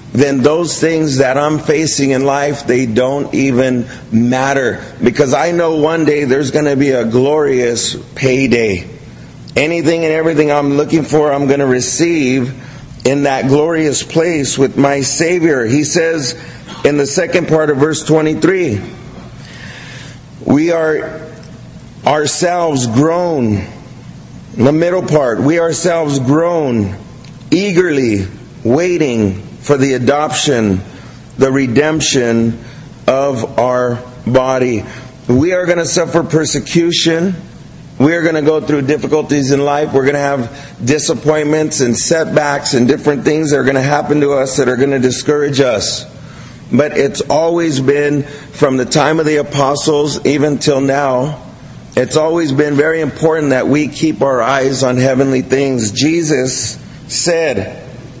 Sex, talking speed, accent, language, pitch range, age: male, 140 wpm, American, English, 130-155 Hz, 40-59